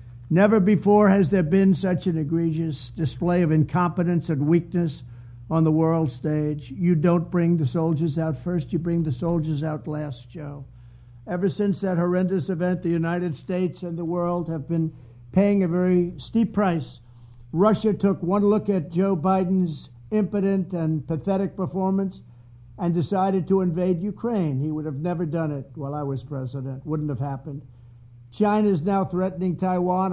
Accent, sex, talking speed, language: American, male, 165 wpm, English